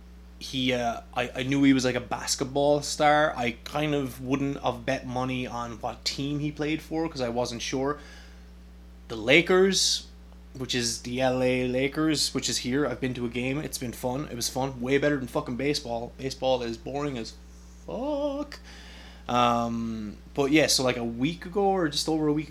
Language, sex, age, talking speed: English, male, 20-39, 190 wpm